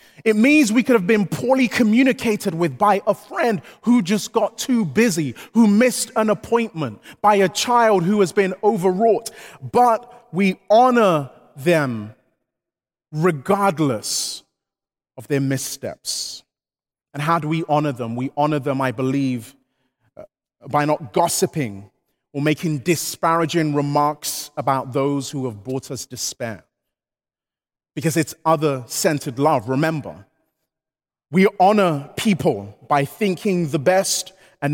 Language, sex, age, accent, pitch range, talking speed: English, male, 30-49, British, 140-200 Hz, 130 wpm